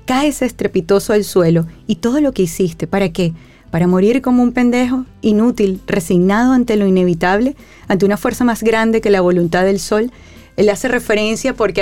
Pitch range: 175-220 Hz